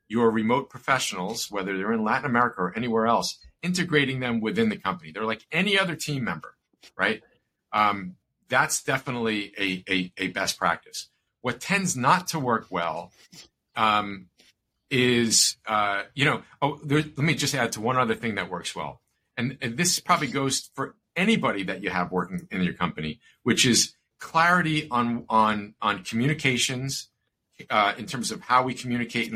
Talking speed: 170 wpm